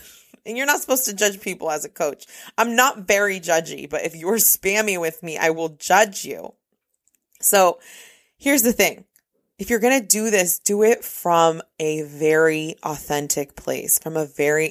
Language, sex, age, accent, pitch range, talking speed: English, female, 20-39, American, 160-225 Hz, 180 wpm